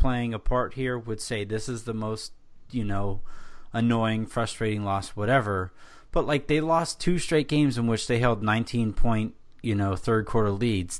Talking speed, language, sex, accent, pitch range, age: 185 wpm, English, male, American, 110-130 Hz, 30-49